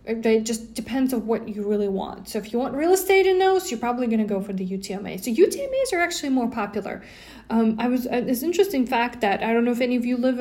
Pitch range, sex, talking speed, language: 205-245 Hz, female, 260 wpm, English